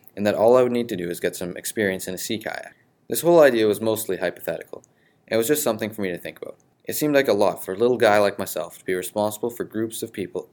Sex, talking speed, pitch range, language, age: male, 285 wpm, 90-115 Hz, English, 20-39